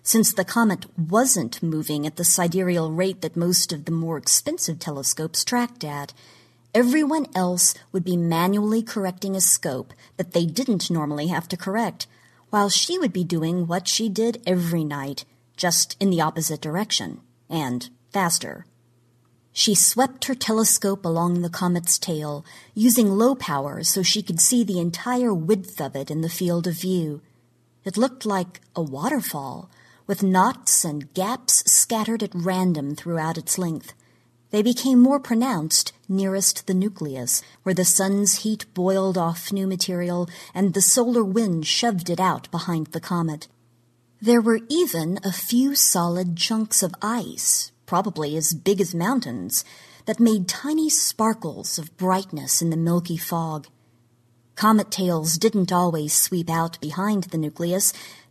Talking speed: 150 wpm